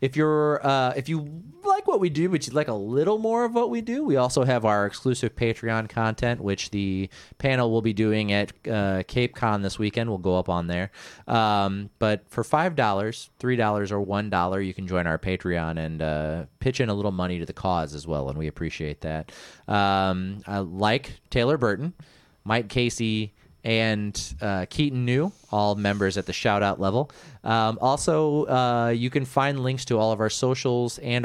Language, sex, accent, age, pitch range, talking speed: English, male, American, 30-49, 95-125 Hz, 195 wpm